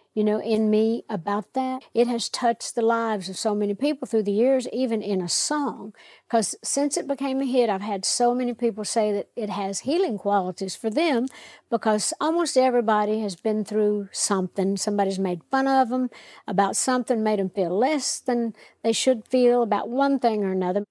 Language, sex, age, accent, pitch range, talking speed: English, female, 60-79, American, 205-250 Hz, 195 wpm